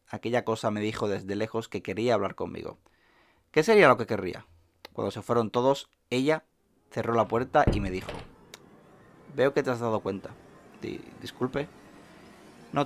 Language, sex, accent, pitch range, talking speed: Spanish, male, Spanish, 100-120 Hz, 160 wpm